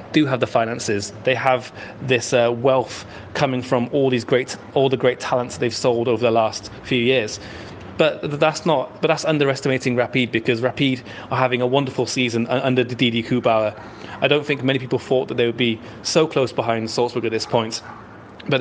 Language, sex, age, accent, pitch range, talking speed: Dutch, male, 30-49, British, 115-130 Hz, 195 wpm